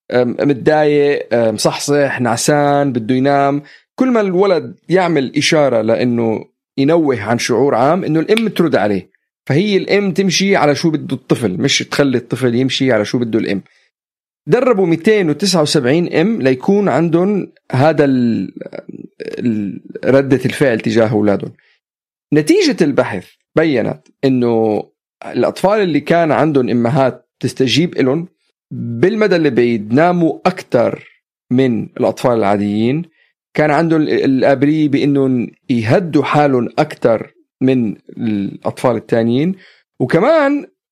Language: Arabic